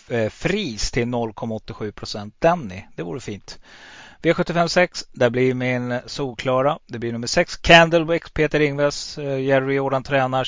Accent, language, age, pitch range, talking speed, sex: native, Swedish, 30-49, 115-145 Hz, 130 wpm, male